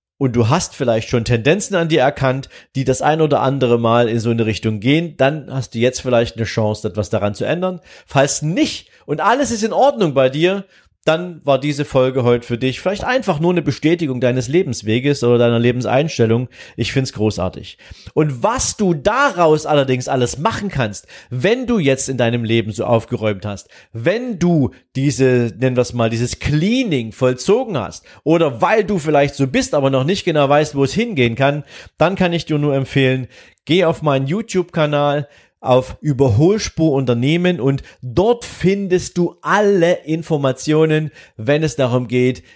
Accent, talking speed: German, 180 wpm